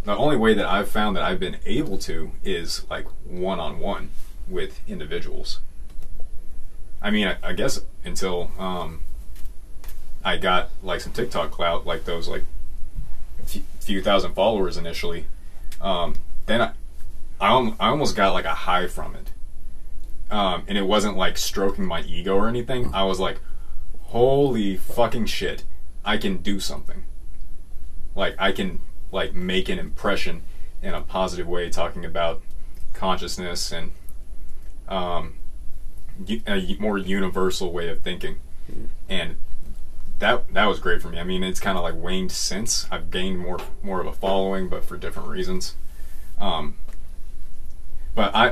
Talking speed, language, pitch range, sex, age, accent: 145 wpm, English, 70-95 Hz, male, 30-49, American